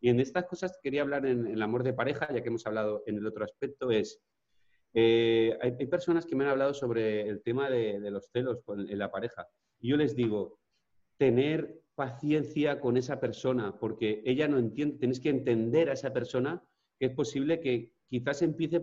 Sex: male